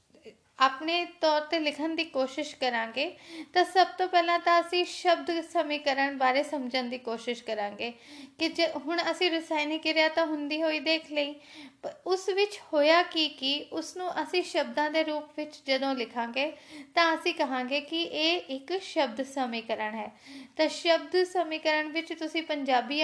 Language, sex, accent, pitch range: Hindi, female, native, 265-320 Hz